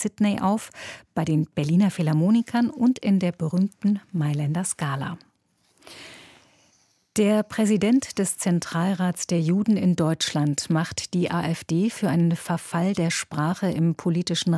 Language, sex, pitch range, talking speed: German, female, 165-205 Hz, 125 wpm